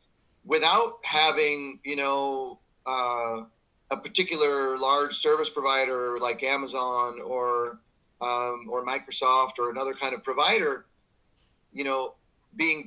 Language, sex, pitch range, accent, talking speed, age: English, male, 130-155 Hz, American, 110 wpm, 30-49